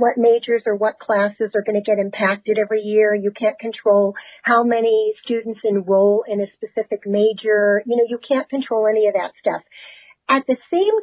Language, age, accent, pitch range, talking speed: English, 50-69, American, 210-275 Hz, 190 wpm